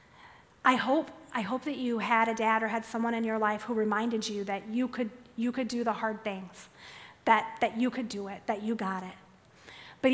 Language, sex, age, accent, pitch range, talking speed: English, female, 30-49, American, 215-250 Hz, 215 wpm